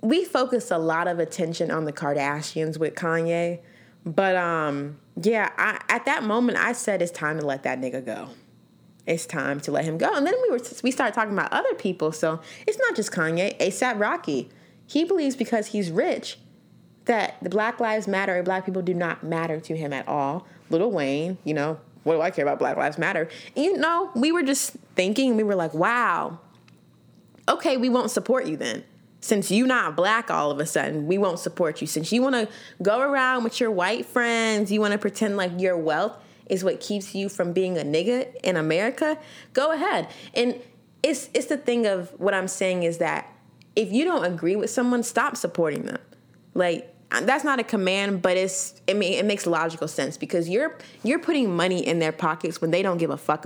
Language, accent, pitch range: English, American, 165-240 Hz